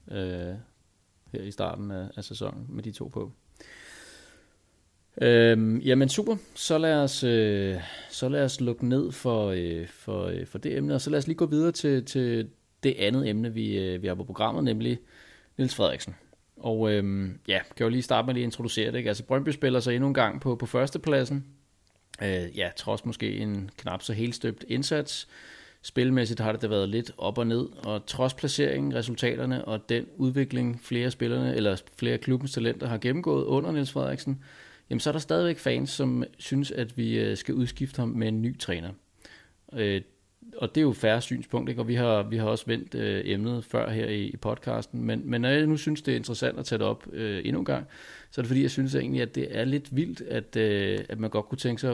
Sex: male